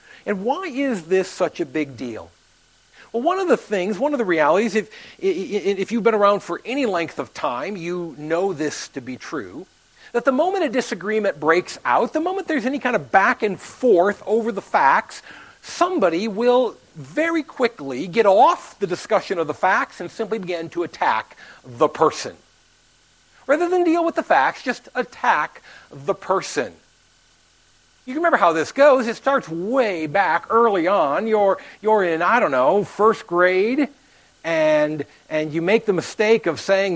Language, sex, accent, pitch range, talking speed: English, male, American, 185-270 Hz, 175 wpm